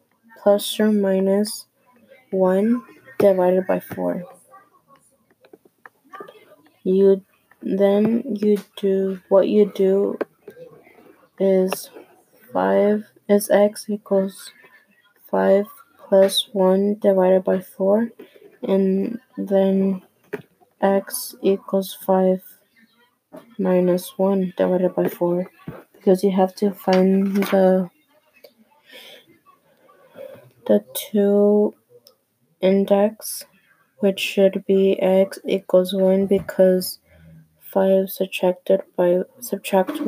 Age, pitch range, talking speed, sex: 20-39, 190-220 Hz, 80 wpm, female